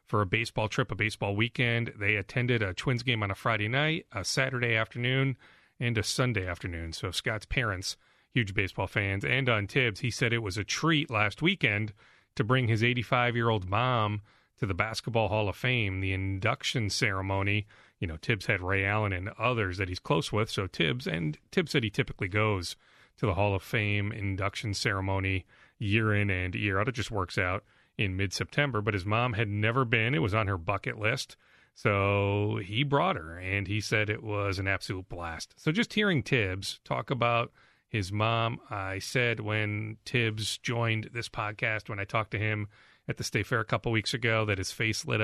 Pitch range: 100-120 Hz